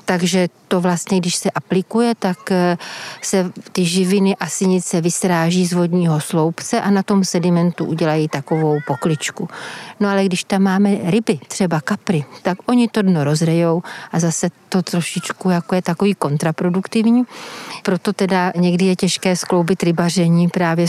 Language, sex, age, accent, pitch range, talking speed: Czech, female, 40-59, native, 170-195 Hz, 145 wpm